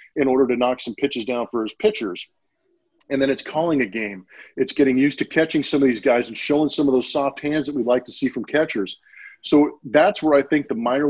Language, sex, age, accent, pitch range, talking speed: English, male, 40-59, American, 120-150 Hz, 250 wpm